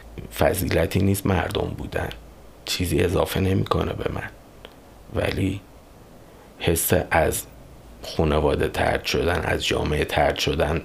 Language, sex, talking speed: Persian, male, 105 wpm